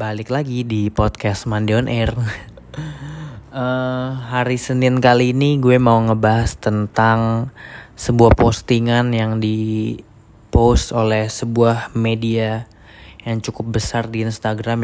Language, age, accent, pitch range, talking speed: Indonesian, 20-39, native, 110-120 Hz, 110 wpm